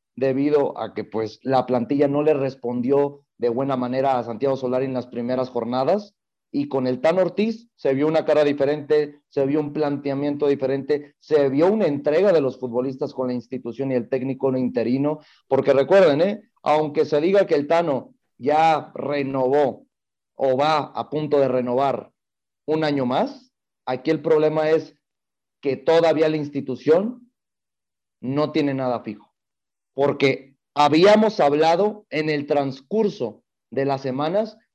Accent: Mexican